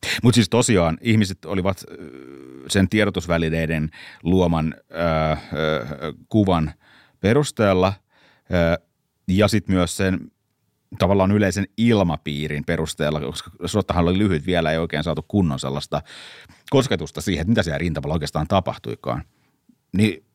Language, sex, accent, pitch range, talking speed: Finnish, male, native, 80-100 Hz, 115 wpm